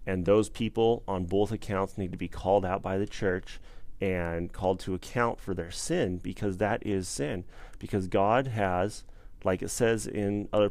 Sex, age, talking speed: male, 30-49, 185 wpm